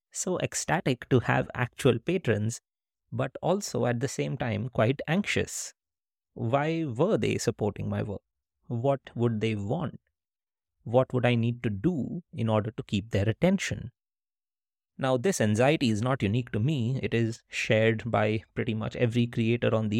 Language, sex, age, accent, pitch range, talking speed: English, male, 30-49, Indian, 110-130 Hz, 160 wpm